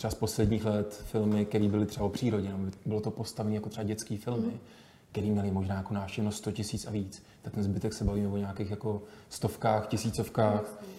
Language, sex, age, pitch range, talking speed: Czech, male, 20-39, 105-115 Hz, 200 wpm